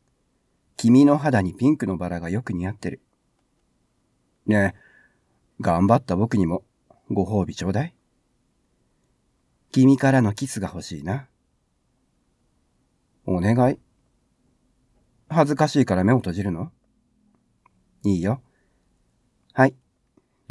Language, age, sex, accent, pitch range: Japanese, 40-59, male, native, 90-125 Hz